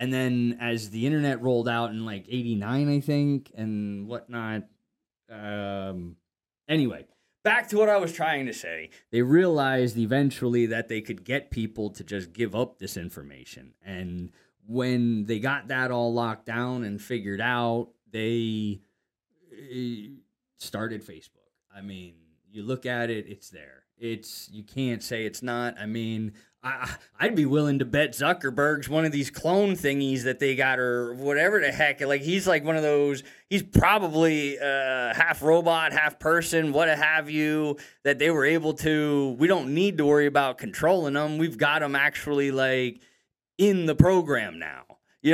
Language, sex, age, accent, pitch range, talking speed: English, male, 20-39, American, 115-150 Hz, 165 wpm